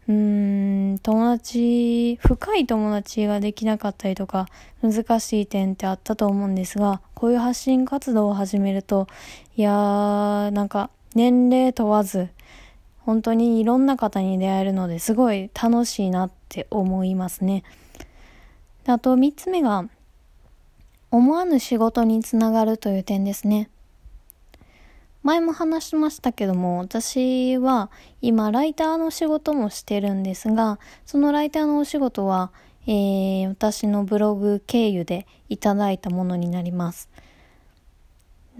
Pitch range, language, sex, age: 195-240 Hz, Japanese, female, 20-39